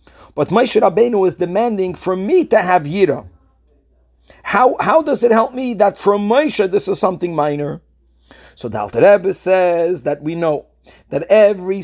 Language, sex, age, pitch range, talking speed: English, male, 40-59, 160-205 Hz, 160 wpm